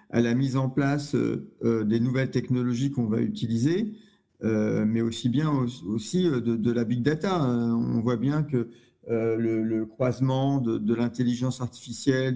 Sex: male